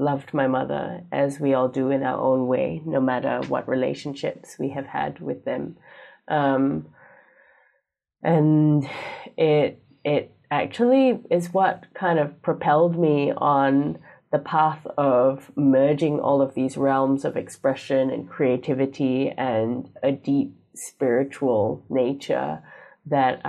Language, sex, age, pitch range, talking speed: English, female, 20-39, 125-145 Hz, 130 wpm